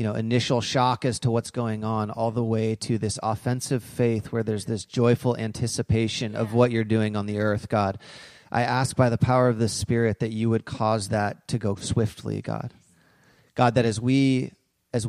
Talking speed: 200 wpm